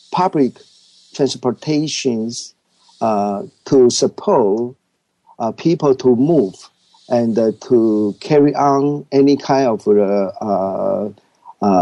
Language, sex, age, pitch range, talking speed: English, male, 50-69, 125-165 Hz, 95 wpm